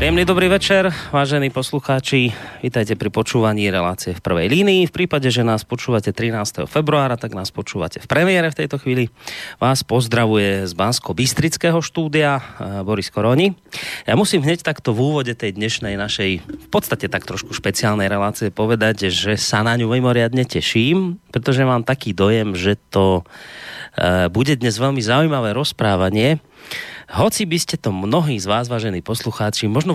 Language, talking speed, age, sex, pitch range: Slovak, 155 wpm, 30-49, male, 100-140 Hz